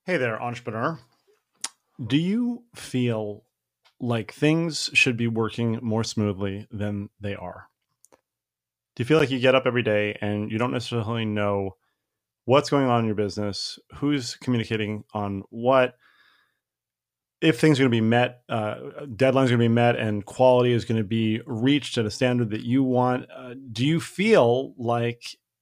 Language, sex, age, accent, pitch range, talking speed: English, male, 30-49, American, 105-130 Hz, 170 wpm